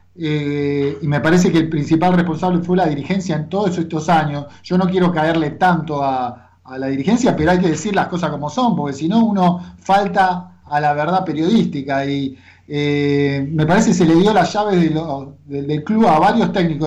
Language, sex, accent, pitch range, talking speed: Spanish, male, Argentinian, 150-185 Hz, 205 wpm